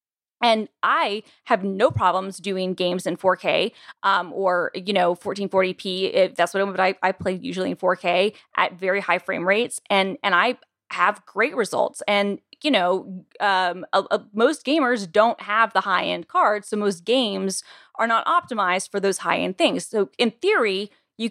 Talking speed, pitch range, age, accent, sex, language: 175 wpm, 190-260 Hz, 20-39, American, female, English